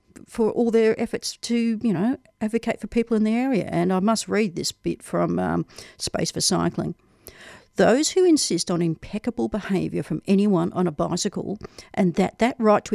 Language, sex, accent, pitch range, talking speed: English, female, Australian, 180-220 Hz, 185 wpm